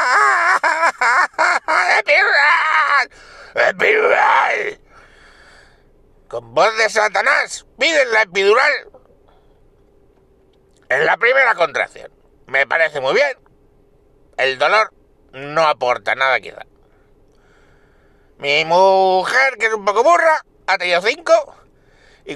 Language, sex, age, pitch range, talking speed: Spanish, male, 60-79, 215-340 Hz, 90 wpm